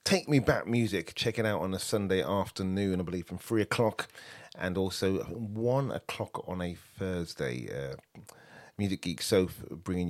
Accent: British